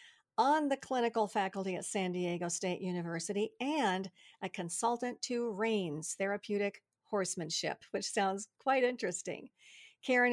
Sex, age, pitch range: female, 50-69, 180-230 Hz